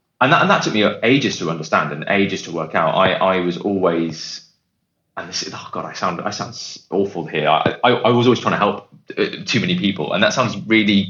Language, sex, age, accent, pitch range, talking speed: English, male, 20-39, British, 85-105 Hz, 230 wpm